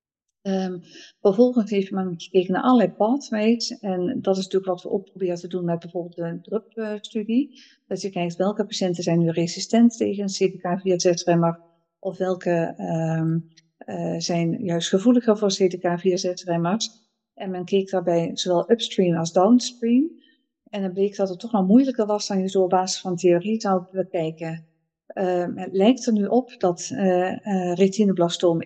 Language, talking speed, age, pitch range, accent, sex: Dutch, 175 wpm, 50-69, 180-215 Hz, Dutch, female